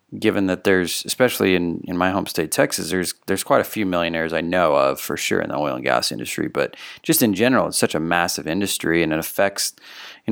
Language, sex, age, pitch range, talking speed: English, male, 30-49, 90-110 Hz, 235 wpm